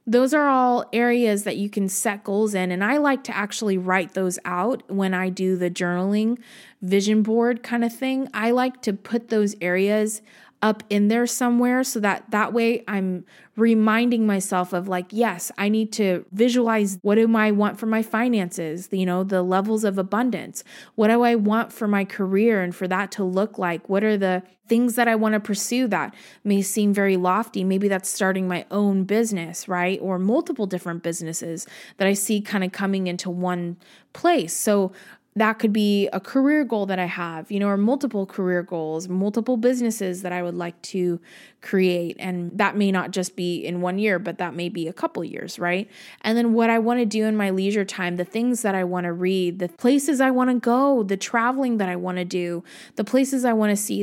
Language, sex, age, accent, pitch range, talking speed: English, female, 20-39, American, 185-230 Hz, 210 wpm